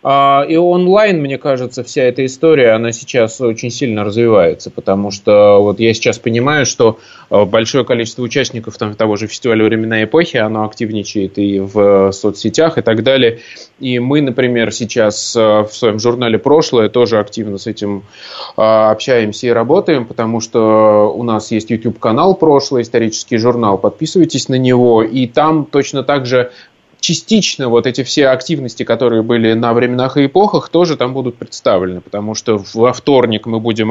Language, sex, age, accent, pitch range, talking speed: Russian, male, 20-39, native, 105-125 Hz, 160 wpm